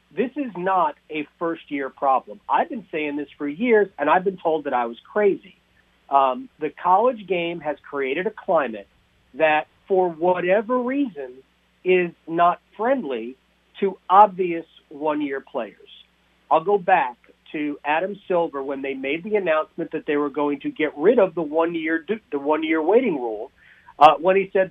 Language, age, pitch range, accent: English, 50-69, 160-210 Hz, American